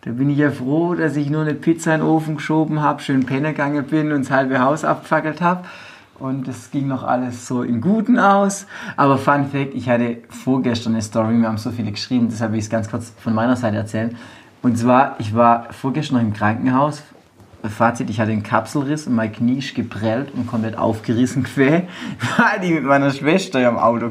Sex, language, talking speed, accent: male, German, 215 wpm, German